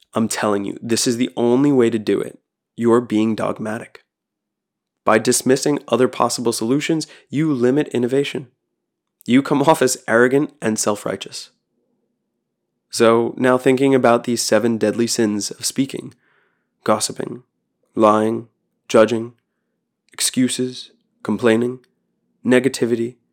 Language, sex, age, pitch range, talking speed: English, male, 20-39, 110-140 Hz, 115 wpm